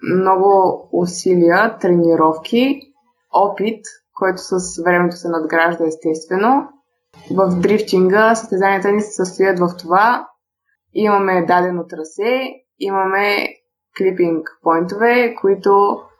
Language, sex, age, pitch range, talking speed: Bulgarian, female, 20-39, 175-215 Hz, 90 wpm